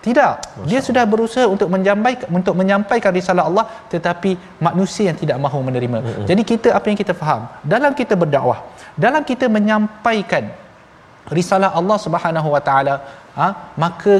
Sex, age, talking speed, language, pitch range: male, 20-39, 145 wpm, Malayalam, 145-190 Hz